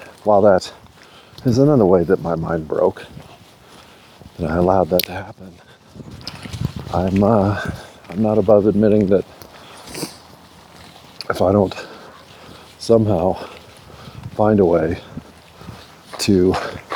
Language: English